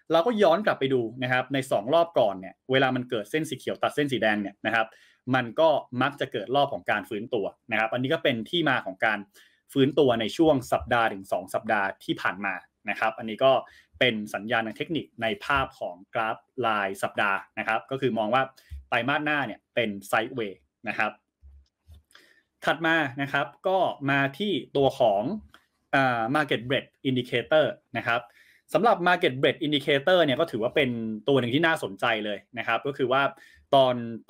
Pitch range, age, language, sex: 115-150 Hz, 20-39, Thai, male